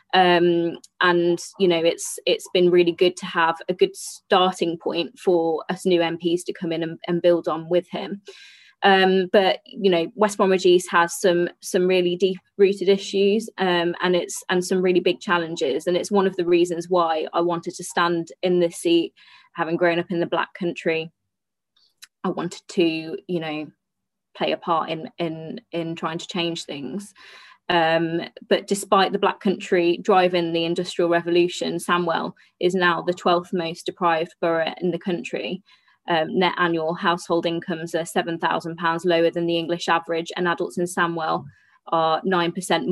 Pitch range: 170-185 Hz